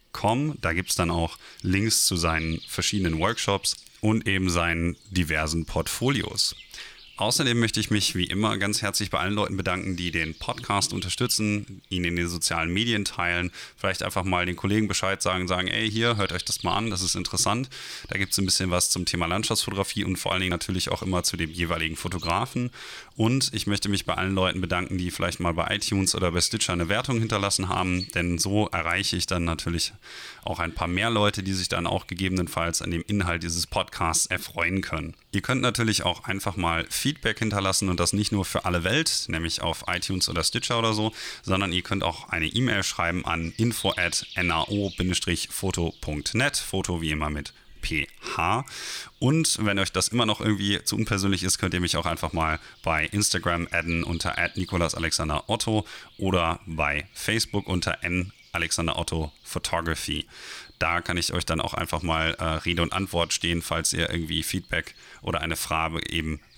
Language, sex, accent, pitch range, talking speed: German, male, German, 85-105 Hz, 185 wpm